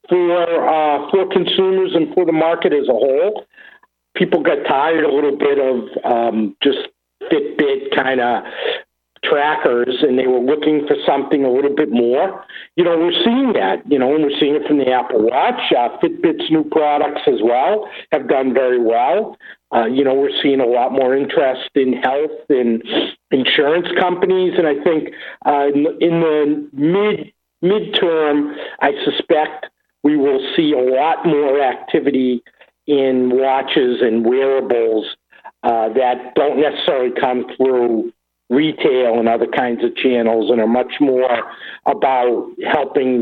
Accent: American